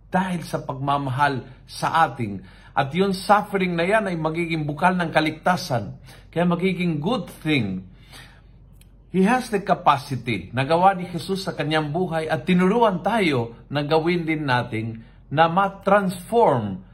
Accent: native